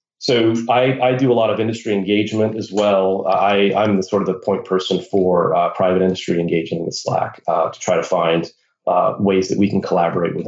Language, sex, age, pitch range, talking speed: English, male, 30-49, 95-110 Hz, 220 wpm